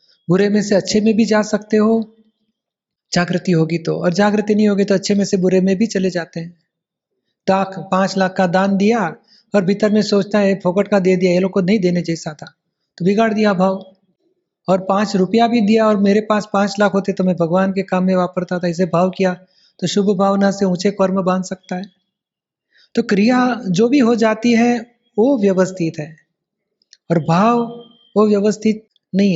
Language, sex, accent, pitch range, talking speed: Hindi, male, native, 185-220 Hz, 190 wpm